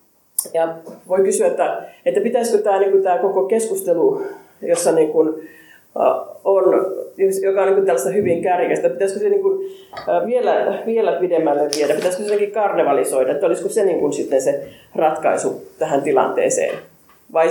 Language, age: Finnish, 30-49